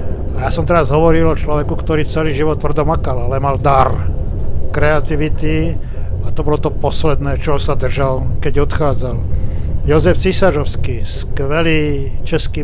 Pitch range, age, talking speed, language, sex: 85-140 Hz, 50-69, 140 wpm, Slovak, male